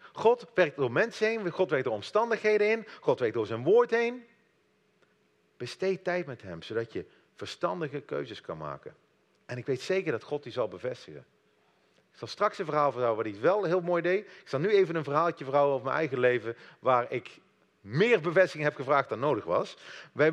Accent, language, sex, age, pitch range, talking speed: Dutch, Dutch, male, 40-59, 130-190 Hz, 200 wpm